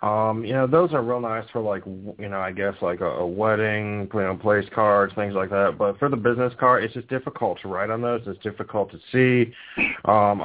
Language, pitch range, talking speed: English, 105-125 Hz, 235 wpm